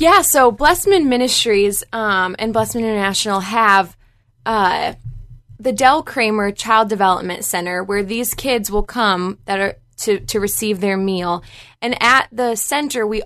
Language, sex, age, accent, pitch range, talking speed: English, female, 20-39, American, 190-230 Hz, 150 wpm